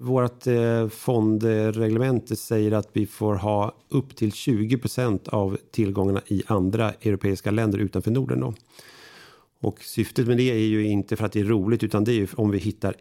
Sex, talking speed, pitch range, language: male, 165 wpm, 100-115 Hz, Swedish